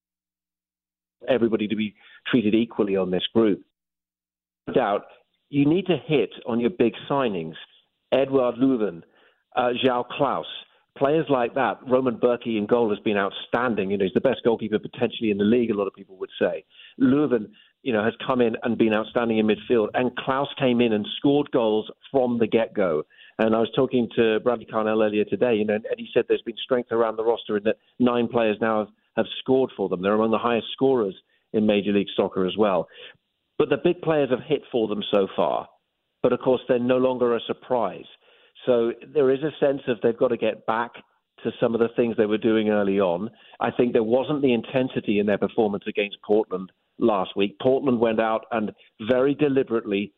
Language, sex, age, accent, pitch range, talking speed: English, male, 40-59, British, 105-130 Hz, 205 wpm